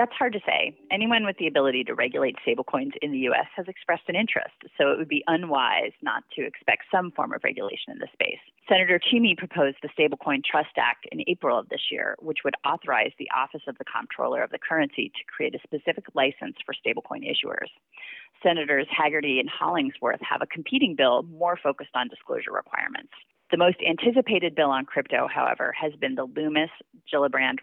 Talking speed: 190 wpm